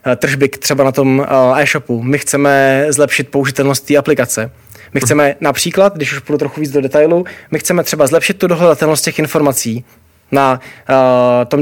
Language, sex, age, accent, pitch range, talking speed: Czech, male, 20-39, native, 135-160 Hz, 160 wpm